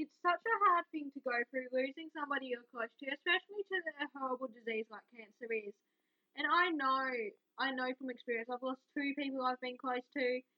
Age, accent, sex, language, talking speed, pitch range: 10-29, Australian, female, English, 205 wpm, 255-320 Hz